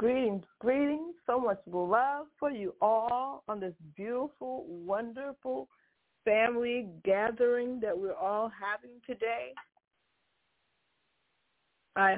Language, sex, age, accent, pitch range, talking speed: English, female, 60-79, American, 190-230 Hz, 100 wpm